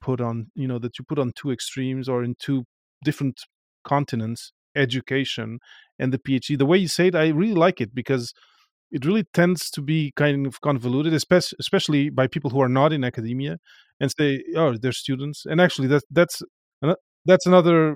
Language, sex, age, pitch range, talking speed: English, male, 30-49, 125-155 Hz, 190 wpm